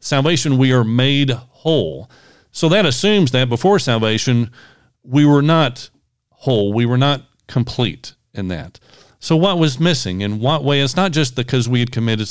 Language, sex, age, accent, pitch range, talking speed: English, male, 40-59, American, 115-140 Hz, 170 wpm